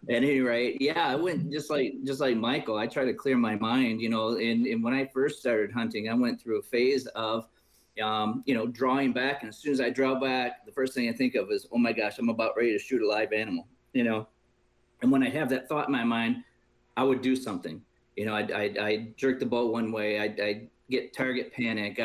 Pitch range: 115-145 Hz